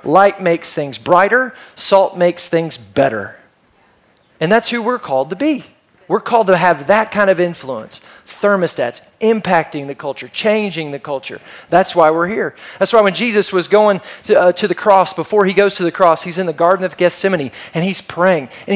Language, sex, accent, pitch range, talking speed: English, male, American, 165-210 Hz, 195 wpm